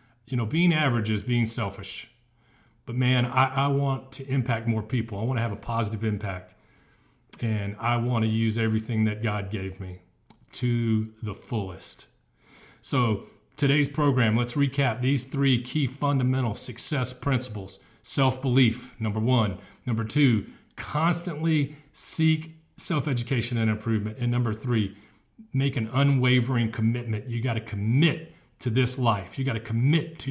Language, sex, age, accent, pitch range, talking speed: English, male, 40-59, American, 110-140 Hz, 150 wpm